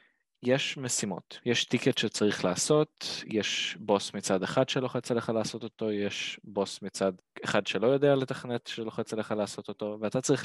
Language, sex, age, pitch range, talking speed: Hebrew, male, 20-39, 100-130 Hz, 155 wpm